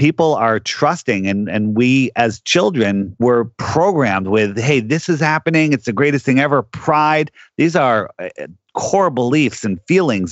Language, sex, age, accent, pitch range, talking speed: English, male, 40-59, American, 110-135 Hz, 155 wpm